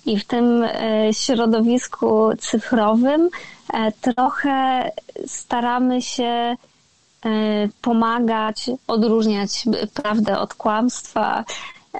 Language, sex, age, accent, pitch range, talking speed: Polish, female, 20-39, native, 215-245 Hz, 65 wpm